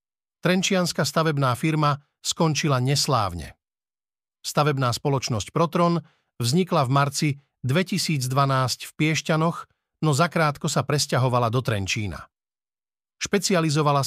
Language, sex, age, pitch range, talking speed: Slovak, male, 50-69, 130-160 Hz, 90 wpm